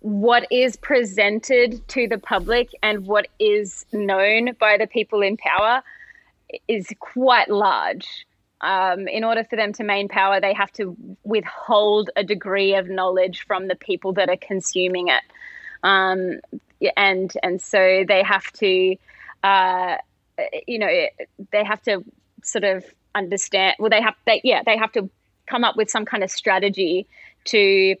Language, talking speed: English, 155 wpm